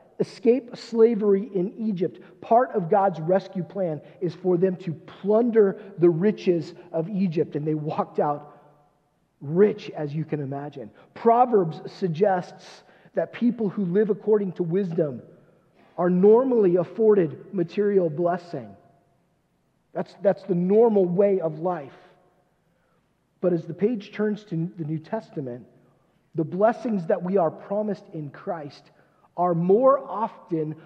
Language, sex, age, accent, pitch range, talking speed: English, male, 40-59, American, 160-205 Hz, 130 wpm